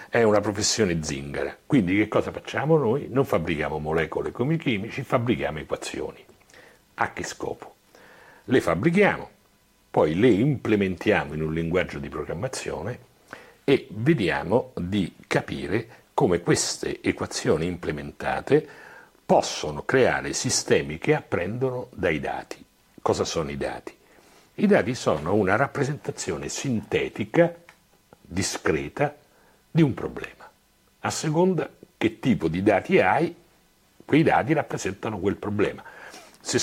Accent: native